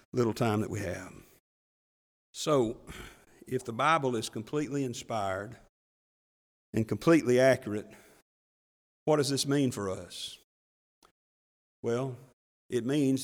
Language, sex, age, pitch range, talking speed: English, male, 50-69, 115-155 Hz, 110 wpm